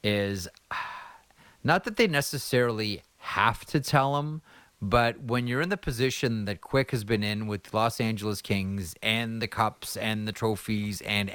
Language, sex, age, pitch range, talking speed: English, male, 30-49, 100-120 Hz, 165 wpm